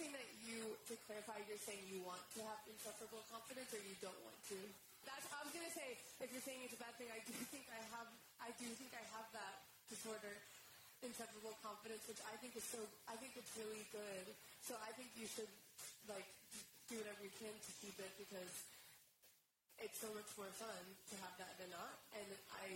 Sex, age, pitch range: female, 20-39, 185-230 Hz